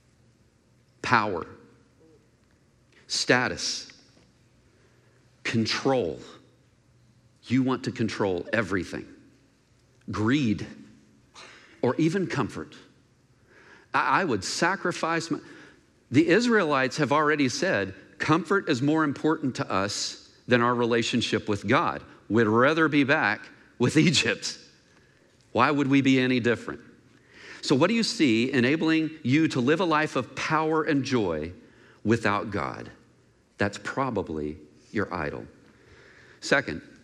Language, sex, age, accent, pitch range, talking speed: English, male, 50-69, American, 120-155 Hz, 110 wpm